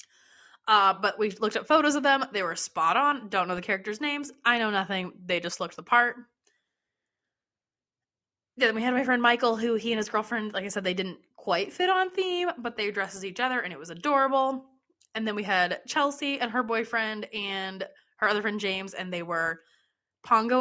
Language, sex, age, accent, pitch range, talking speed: English, female, 20-39, American, 185-260 Hz, 215 wpm